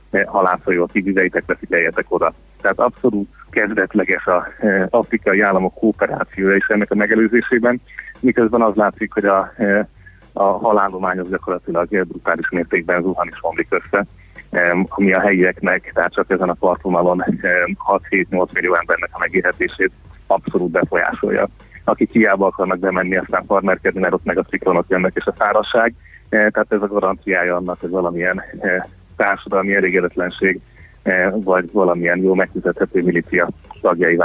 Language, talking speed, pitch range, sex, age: Hungarian, 140 wpm, 95-110 Hz, male, 30-49